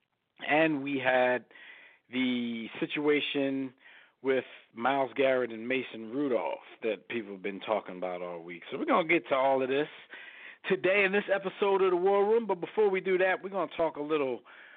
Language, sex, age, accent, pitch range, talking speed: English, male, 50-69, American, 120-170 Hz, 190 wpm